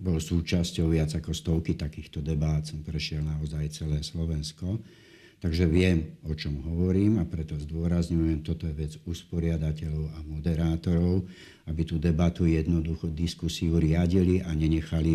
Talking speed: 135 wpm